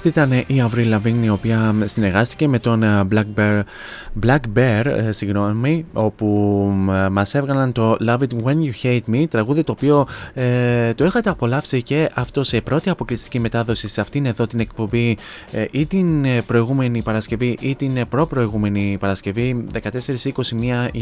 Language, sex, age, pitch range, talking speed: Greek, male, 20-39, 105-125 Hz, 150 wpm